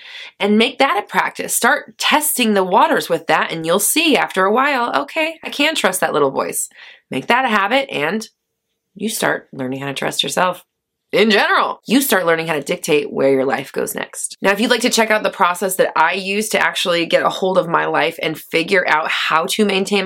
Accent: American